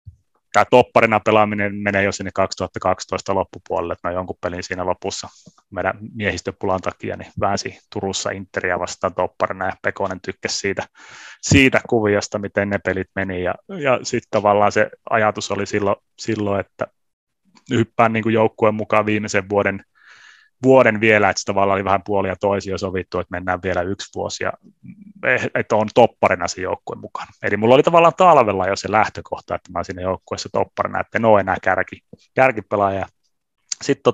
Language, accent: Finnish, native